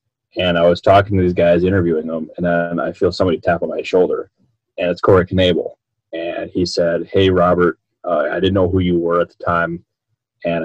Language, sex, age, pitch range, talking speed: English, male, 20-39, 85-110 Hz, 215 wpm